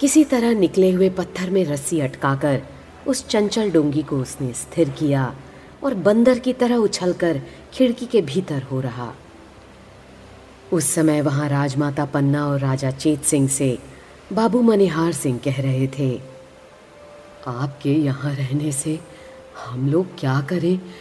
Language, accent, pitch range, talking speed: Hindi, native, 135-190 Hz, 135 wpm